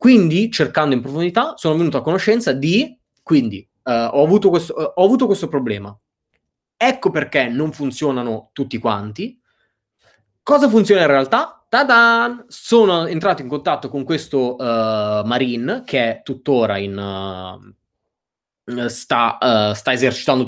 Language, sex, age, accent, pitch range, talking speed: Italian, male, 20-39, native, 110-160 Hz, 140 wpm